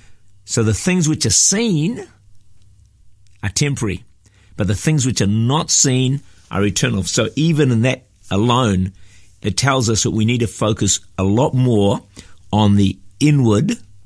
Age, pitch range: 50-69, 100-125 Hz